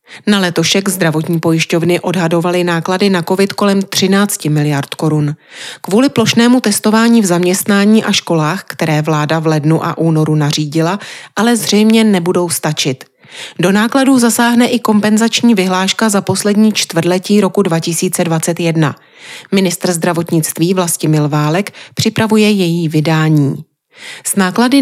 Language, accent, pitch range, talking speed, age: Czech, native, 165-215 Hz, 120 wpm, 30-49